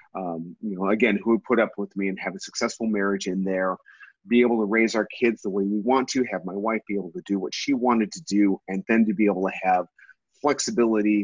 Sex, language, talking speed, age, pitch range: male, English, 255 wpm, 30-49, 95-125 Hz